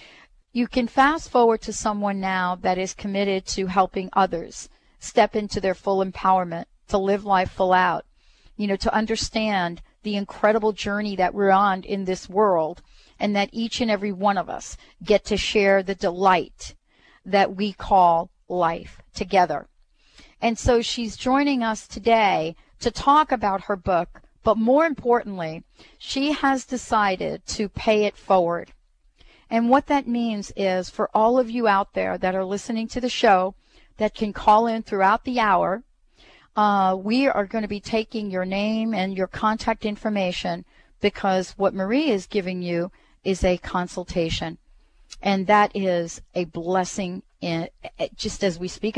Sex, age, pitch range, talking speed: female, 40-59, 190-225 Hz, 160 wpm